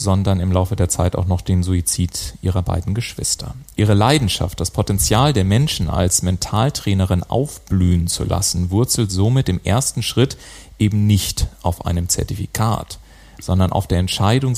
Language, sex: German, male